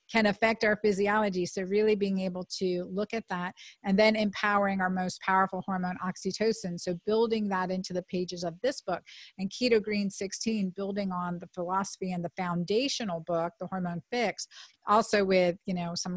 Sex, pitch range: female, 185-225 Hz